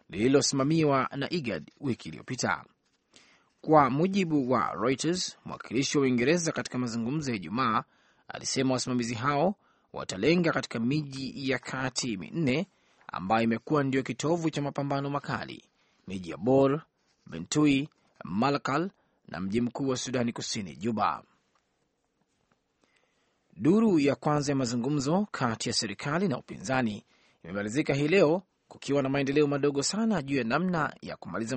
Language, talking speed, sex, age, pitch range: Swahili, 125 wpm, male, 30-49, 120-150 Hz